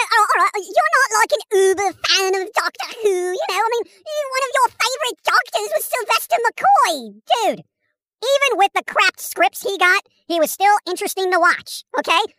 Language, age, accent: English, 50-69, American